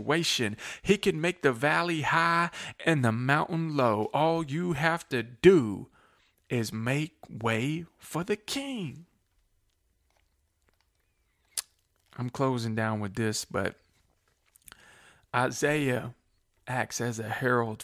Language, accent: English, American